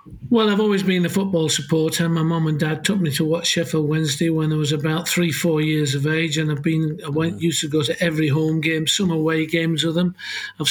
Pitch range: 160-185 Hz